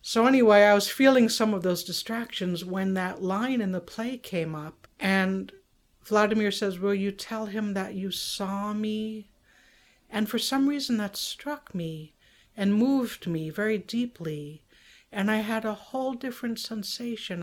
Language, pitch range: English, 185-225 Hz